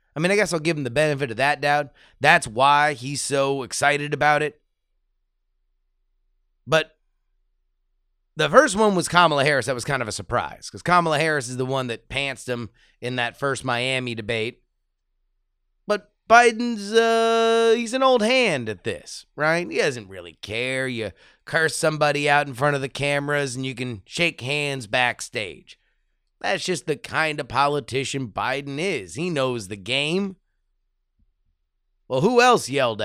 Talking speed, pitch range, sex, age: 165 wpm, 120-165 Hz, male, 30-49